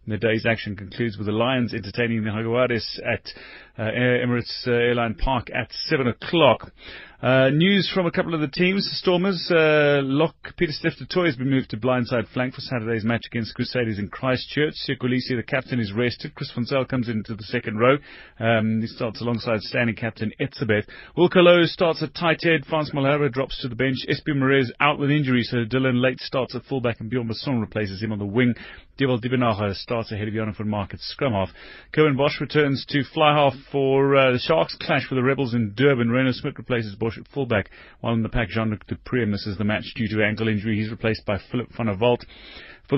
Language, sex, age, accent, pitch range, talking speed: English, male, 30-49, British, 110-135 Hz, 205 wpm